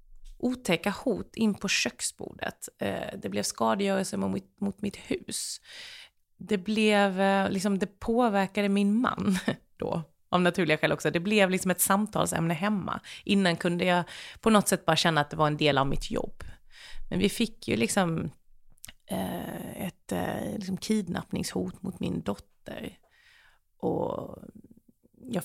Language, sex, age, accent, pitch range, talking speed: Swedish, female, 30-49, native, 165-205 Hz, 140 wpm